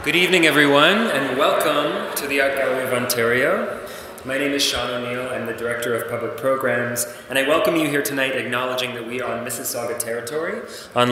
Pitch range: 110-135 Hz